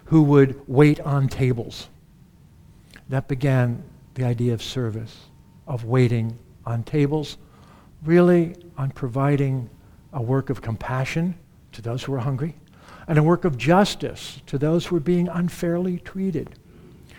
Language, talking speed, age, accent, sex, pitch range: English, 135 wpm, 60-79, American, male, 125-175 Hz